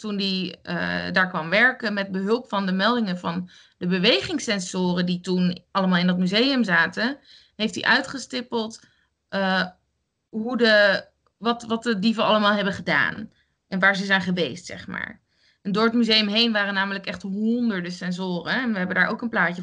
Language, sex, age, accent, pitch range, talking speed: Dutch, female, 20-39, Dutch, 185-235 Hz, 170 wpm